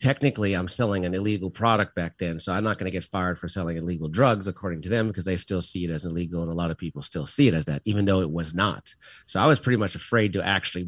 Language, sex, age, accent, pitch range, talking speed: English, male, 30-49, American, 90-120 Hz, 285 wpm